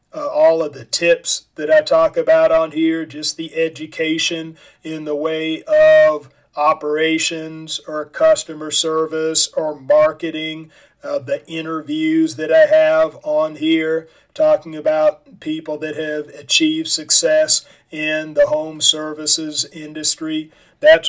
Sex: male